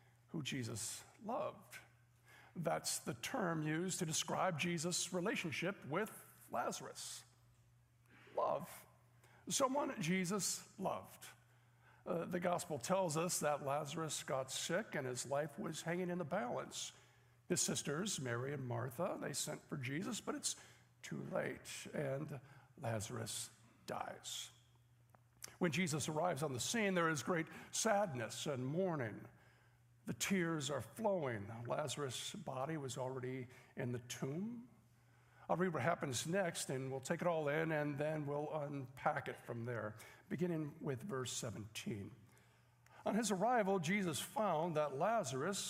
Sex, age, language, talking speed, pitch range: male, 60-79, English, 135 wpm, 125-180 Hz